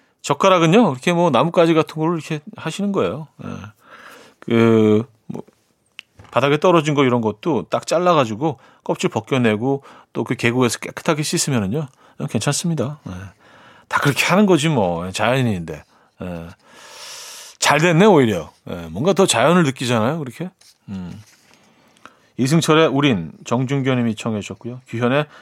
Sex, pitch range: male, 120-165 Hz